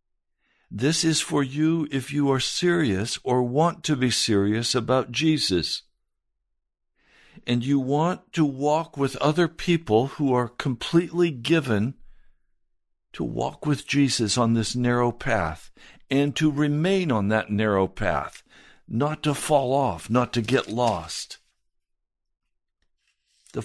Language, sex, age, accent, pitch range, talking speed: English, male, 60-79, American, 115-145 Hz, 130 wpm